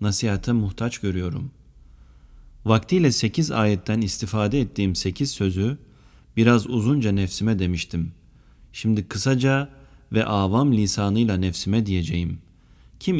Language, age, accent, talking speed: Turkish, 40-59, native, 100 wpm